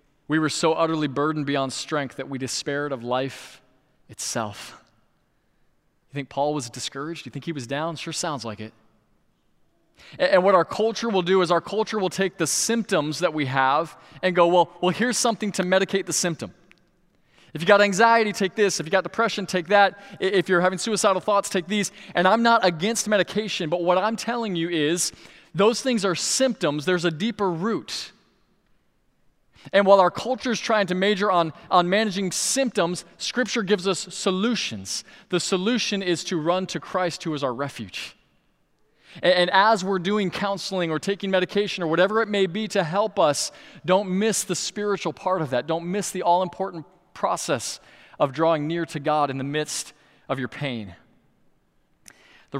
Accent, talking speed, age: American, 185 wpm, 20-39